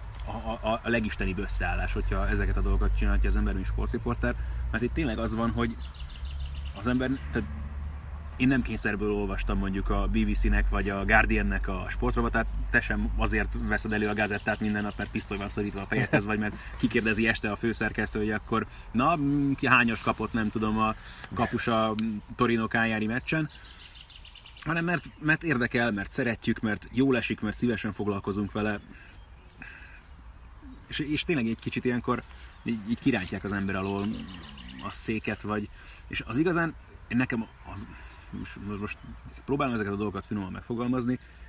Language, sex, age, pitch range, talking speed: Hungarian, male, 30-49, 95-115 Hz, 150 wpm